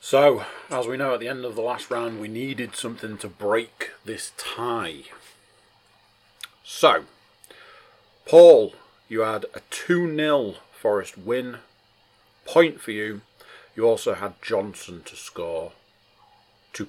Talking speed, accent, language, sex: 130 wpm, British, English, male